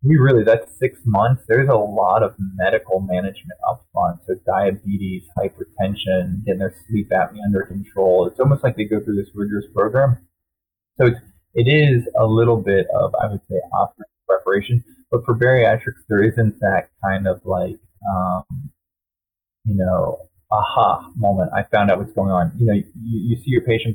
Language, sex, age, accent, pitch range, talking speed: English, male, 20-39, American, 95-115 Hz, 180 wpm